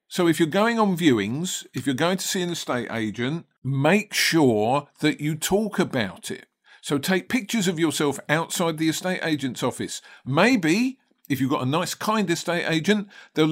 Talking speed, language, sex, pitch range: 180 wpm, English, male, 135-180 Hz